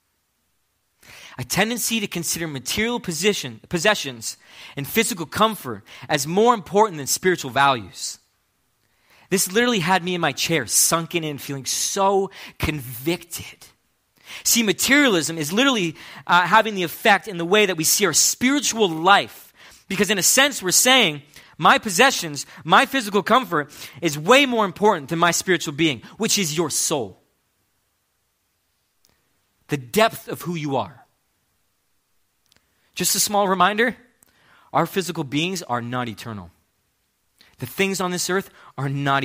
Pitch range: 135-195 Hz